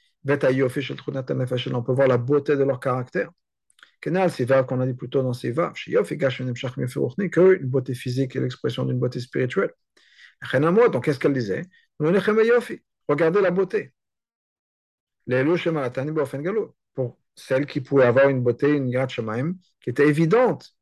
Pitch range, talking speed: 125-160 Hz, 130 wpm